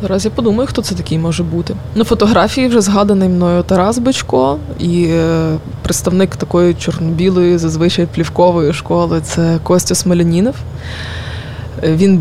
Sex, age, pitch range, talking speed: female, 20-39, 160-185 Hz, 130 wpm